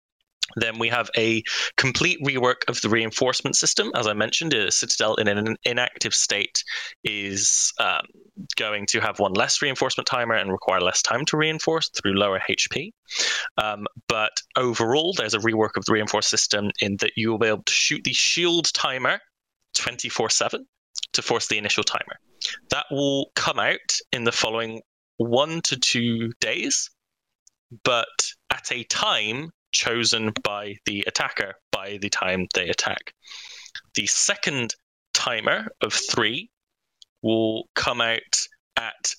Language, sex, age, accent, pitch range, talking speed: English, male, 20-39, British, 105-120 Hz, 150 wpm